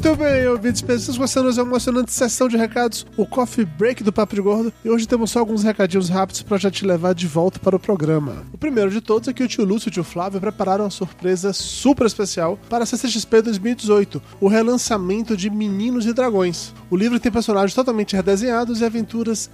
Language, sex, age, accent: Portuguese, male, 20-39, Brazilian